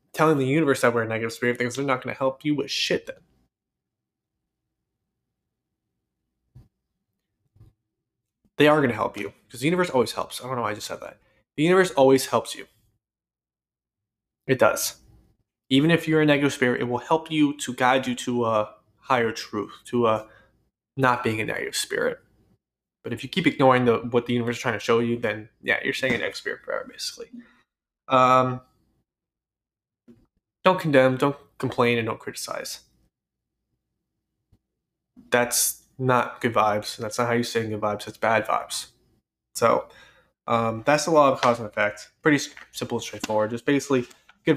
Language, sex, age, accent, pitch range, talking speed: English, male, 20-39, American, 115-145 Hz, 170 wpm